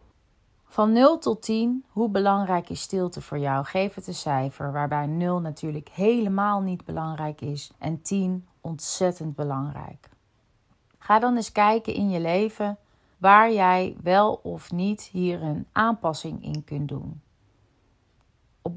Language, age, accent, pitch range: Dutch, 30-49, Dutch, 150-195 Hz